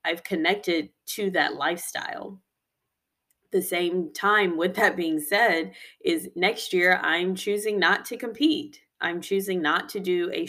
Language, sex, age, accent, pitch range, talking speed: English, female, 20-39, American, 160-220 Hz, 150 wpm